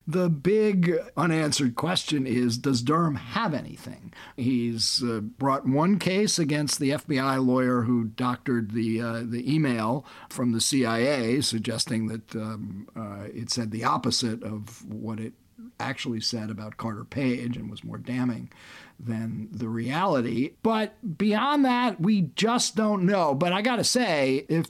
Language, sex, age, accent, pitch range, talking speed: English, male, 50-69, American, 120-160 Hz, 150 wpm